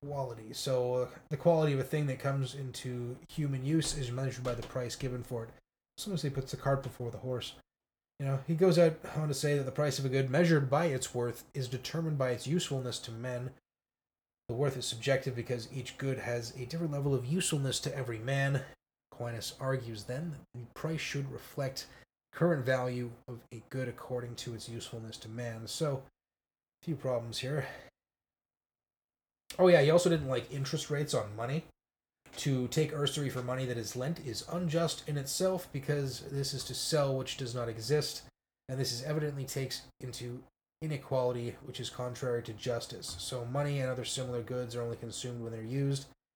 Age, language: 20-39, English